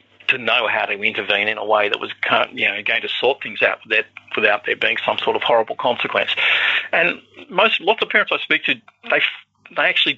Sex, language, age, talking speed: male, English, 50-69, 210 wpm